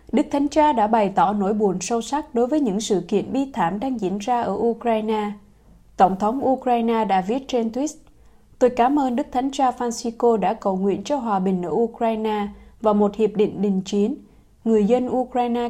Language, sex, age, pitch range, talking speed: Vietnamese, female, 20-39, 205-250 Hz, 205 wpm